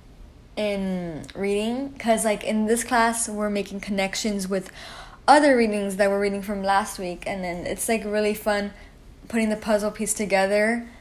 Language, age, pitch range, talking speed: English, 10-29, 195-230 Hz, 165 wpm